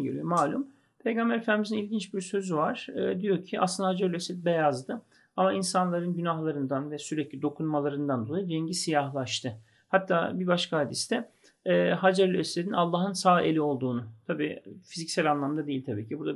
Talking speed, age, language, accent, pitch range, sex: 155 wpm, 40-59, Turkish, native, 145-185 Hz, male